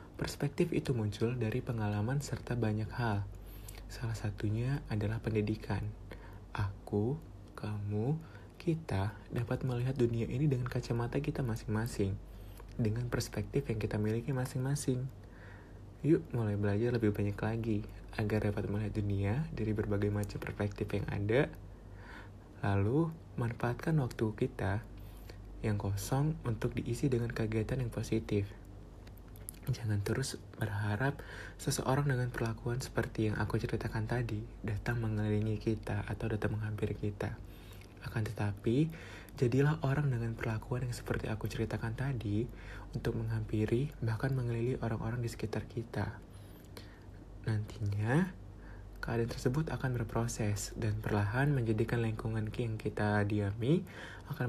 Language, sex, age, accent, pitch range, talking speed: Indonesian, male, 30-49, native, 105-120 Hz, 120 wpm